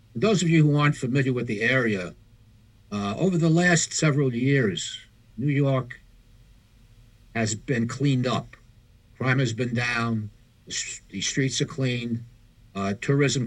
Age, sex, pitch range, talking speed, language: 60-79, male, 110-130 Hz, 145 wpm, English